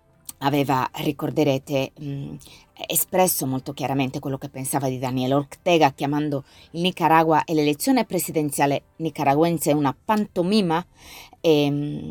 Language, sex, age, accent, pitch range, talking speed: Italian, female, 30-49, native, 135-155 Hz, 100 wpm